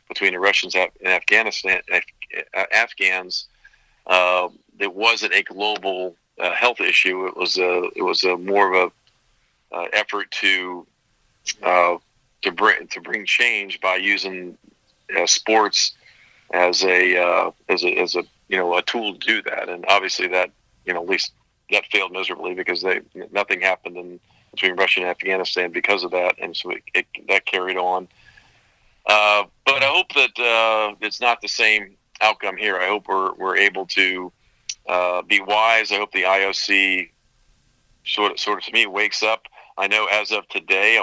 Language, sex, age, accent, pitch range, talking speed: English, male, 50-69, American, 90-105 Hz, 175 wpm